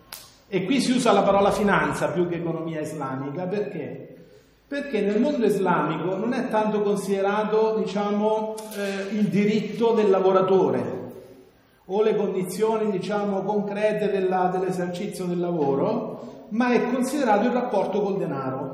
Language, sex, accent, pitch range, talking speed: Italian, male, native, 170-220 Hz, 135 wpm